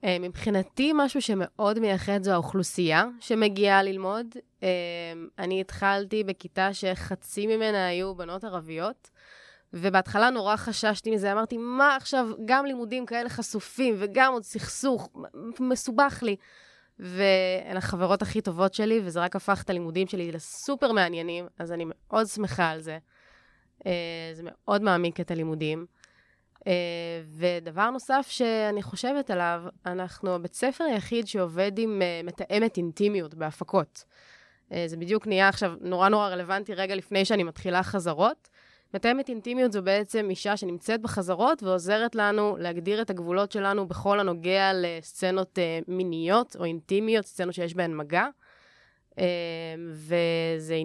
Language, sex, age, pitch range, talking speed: Hebrew, female, 20-39, 180-220 Hz, 130 wpm